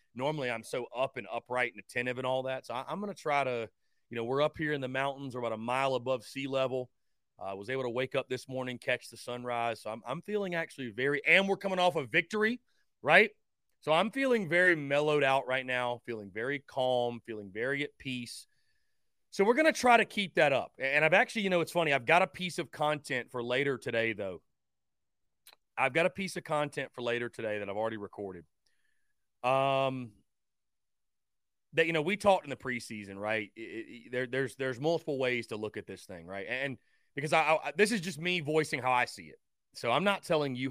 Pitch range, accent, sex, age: 120-165 Hz, American, male, 30-49